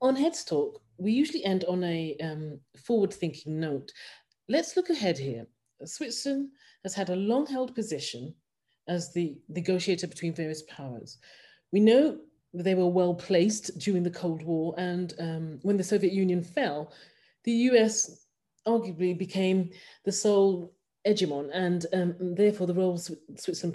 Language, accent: English, British